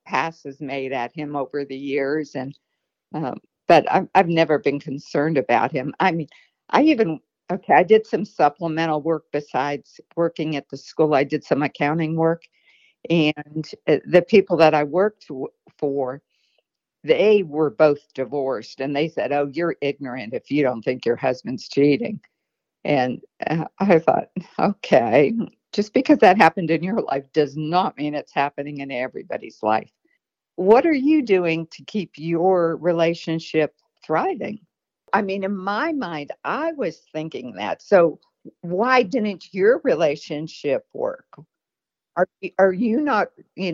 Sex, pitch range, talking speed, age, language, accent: female, 145-210 Hz, 150 wpm, 60-79, English, American